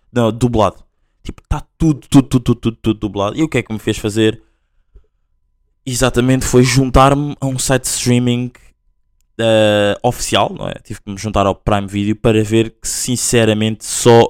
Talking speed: 185 wpm